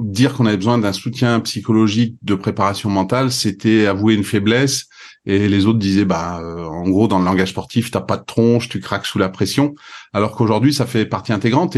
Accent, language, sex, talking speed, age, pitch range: French, French, male, 210 wpm, 40-59, 100-120 Hz